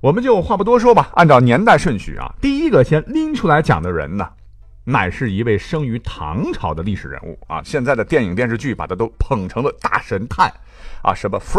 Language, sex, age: Chinese, male, 50-69